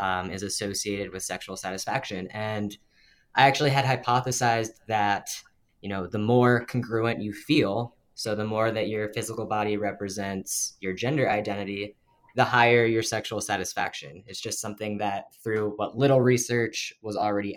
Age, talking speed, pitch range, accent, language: 10-29, 155 wpm, 105-125 Hz, American, English